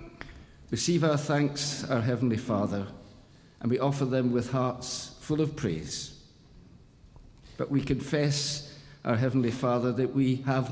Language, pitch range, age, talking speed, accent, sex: English, 125-145 Hz, 50-69, 135 wpm, British, male